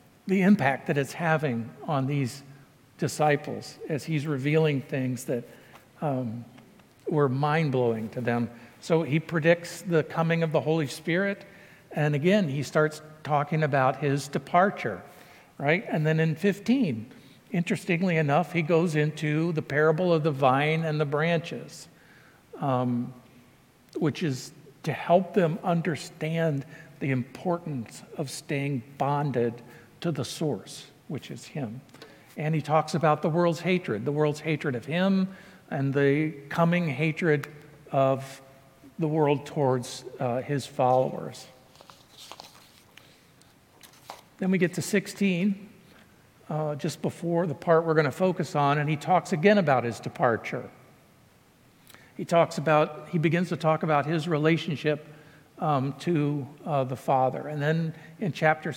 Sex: male